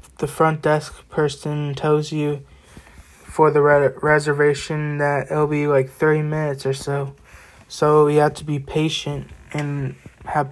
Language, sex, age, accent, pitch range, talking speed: English, male, 20-39, American, 135-150 Hz, 150 wpm